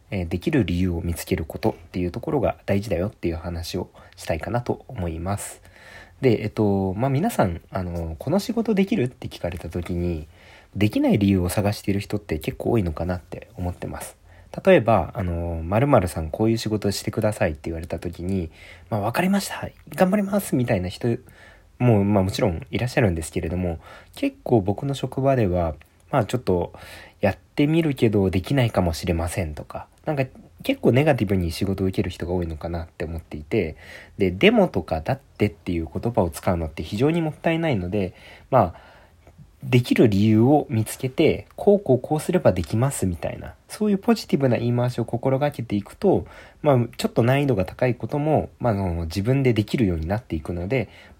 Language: Japanese